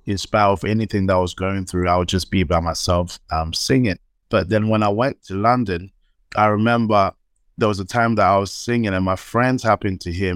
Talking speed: 230 wpm